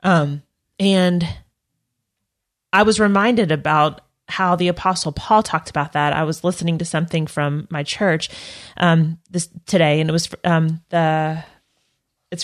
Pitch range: 160-185 Hz